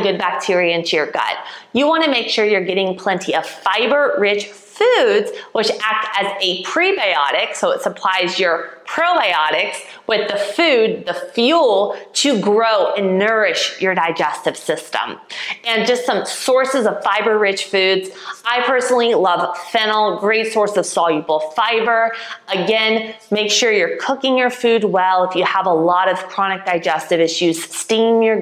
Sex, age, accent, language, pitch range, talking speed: female, 30-49, American, English, 180-240 Hz, 155 wpm